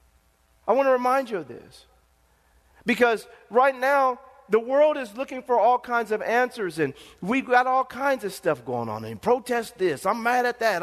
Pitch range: 215-275 Hz